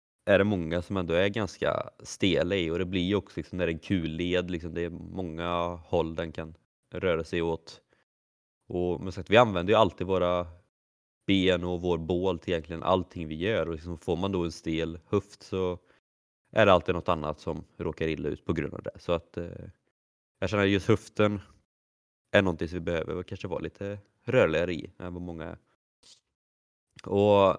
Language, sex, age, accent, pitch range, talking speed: Swedish, male, 20-39, native, 85-100 Hz, 195 wpm